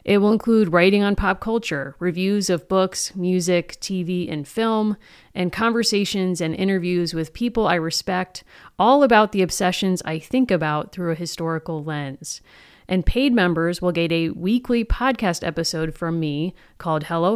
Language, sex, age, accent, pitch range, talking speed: English, female, 30-49, American, 165-210 Hz, 160 wpm